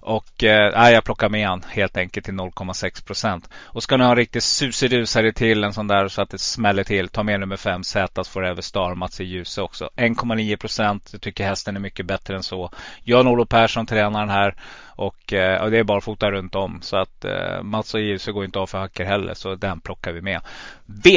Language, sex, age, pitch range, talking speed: Swedish, male, 30-49, 100-120 Hz, 220 wpm